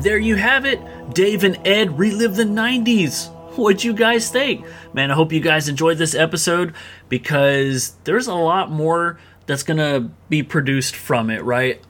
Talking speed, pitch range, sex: 170 wpm, 130-180 Hz, male